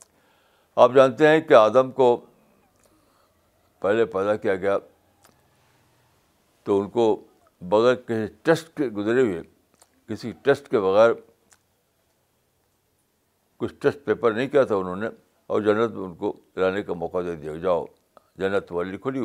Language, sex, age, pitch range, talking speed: Urdu, male, 60-79, 95-130 Hz, 140 wpm